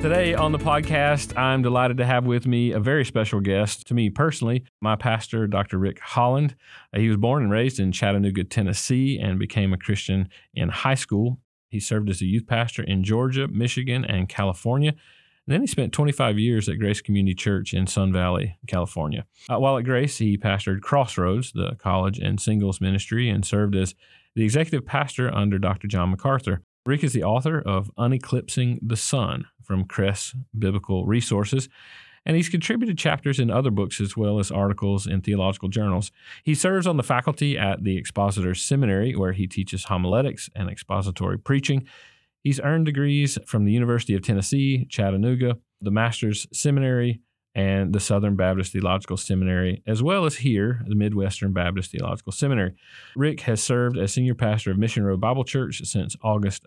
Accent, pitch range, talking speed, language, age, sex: American, 100-130 Hz, 175 wpm, English, 40-59, male